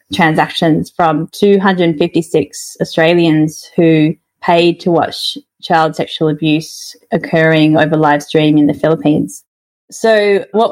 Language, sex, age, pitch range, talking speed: English, female, 20-39, 165-195 Hz, 110 wpm